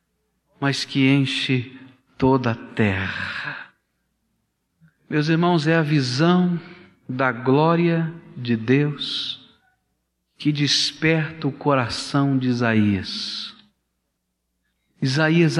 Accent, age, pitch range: Brazilian, 50-69, 120-160 Hz